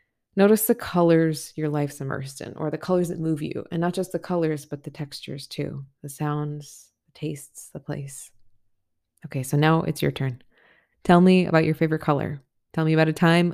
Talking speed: 200 wpm